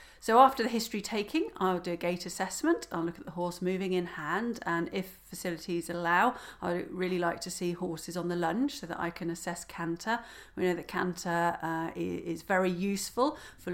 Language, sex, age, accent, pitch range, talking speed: English, female, 40-59, British, 170-210 Hz, 200 wpm